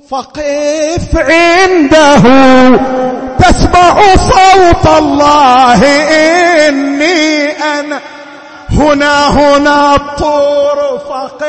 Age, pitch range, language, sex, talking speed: 50-69, 285-310 Hz, Arabic, male, 55 wpm